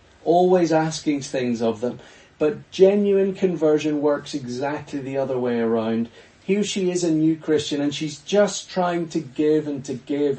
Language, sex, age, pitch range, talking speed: English, male, 40-59, 130-170 Hz, 170 wpm